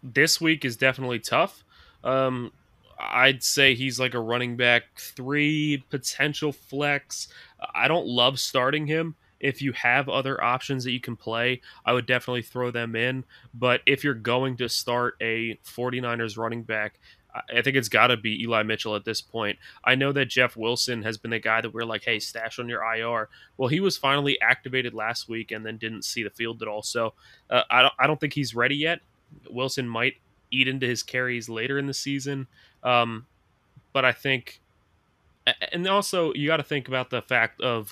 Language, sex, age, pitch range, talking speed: English, male, 20-39, 115-135 Hz, 190 wpm